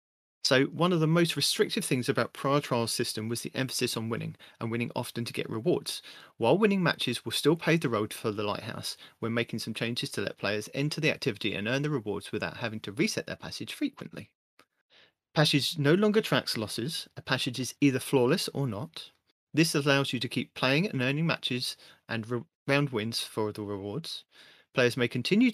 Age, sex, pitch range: 30-49, male, 120-160 Hz